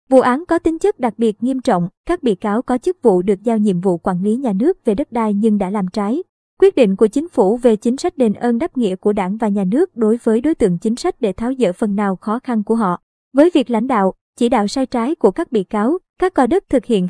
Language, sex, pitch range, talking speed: Vietnamese, male, 215-265 Hz, 275 wpm